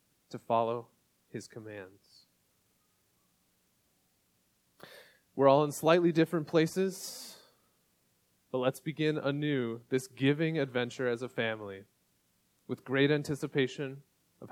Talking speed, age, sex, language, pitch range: 100 wpm, 30-49, male, English, 110-145 Hz